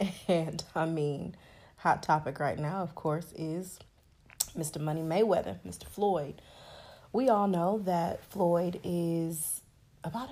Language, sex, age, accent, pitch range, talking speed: English, female, 30-49, American, 160-210 Hz, 130 wpm